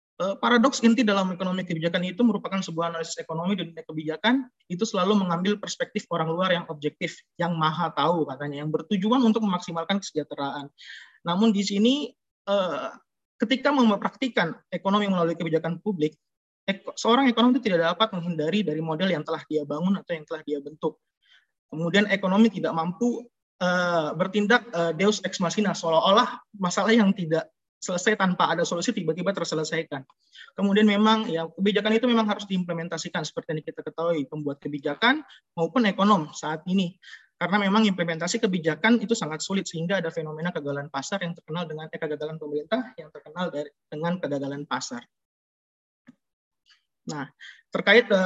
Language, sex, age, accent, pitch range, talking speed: Indonesian, male, 20-39, native, 160-210 Hz, 145 wpm